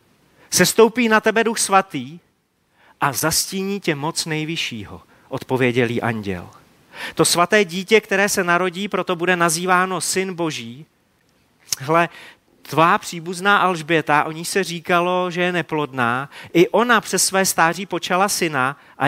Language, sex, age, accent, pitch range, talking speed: Czech, male, 30-49, native, 155-205 Hz, 130 wpm